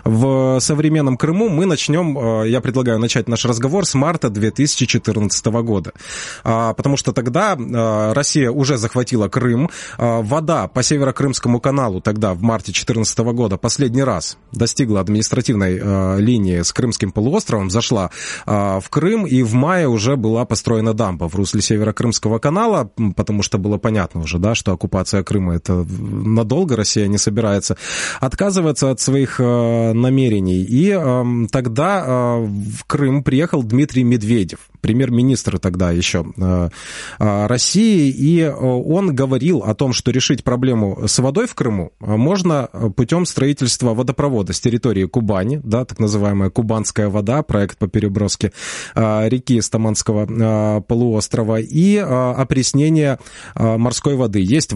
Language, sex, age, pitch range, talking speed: Russian, male, 20-39, 105-135 Hz, 135 wpm